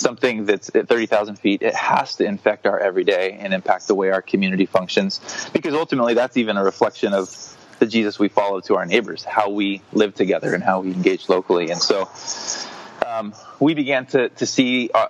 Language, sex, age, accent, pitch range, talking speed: English, male, 20-39, American, 100-115 Hz, 195 wpm